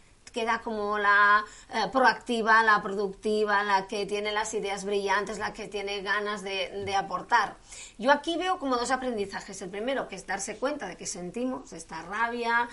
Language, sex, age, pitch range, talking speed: Spanish, female, 30-49, 205-270 Hz, 175 wpm